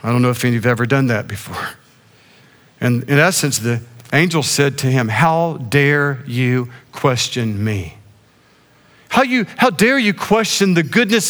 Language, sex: English, male